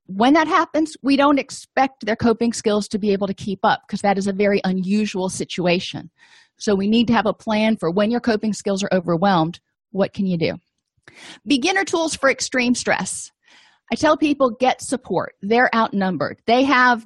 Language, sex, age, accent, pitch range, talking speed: English, female, 30-49, American, 190-250 Hz, 190 wpm